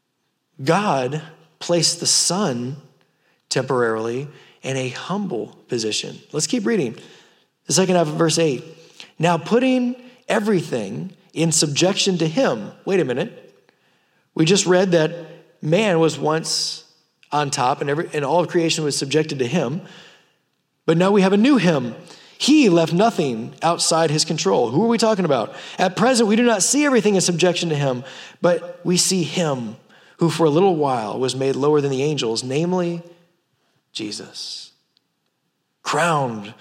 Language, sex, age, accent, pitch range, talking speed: English, male, 30-49, American, 150-190 Hz, 150 wpm